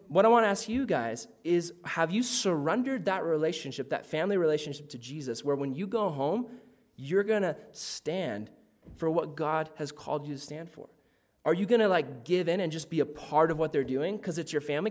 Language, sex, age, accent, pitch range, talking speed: English, male, 20-39, American, 155-210 Hz, 225 wpm